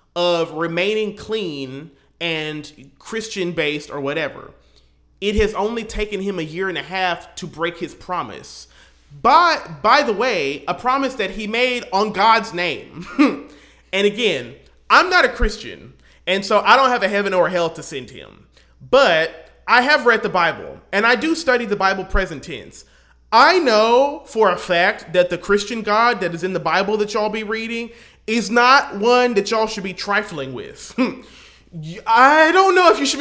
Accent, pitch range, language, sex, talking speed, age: American, 165-230 Hz, English, male, 175 wpm, 30-49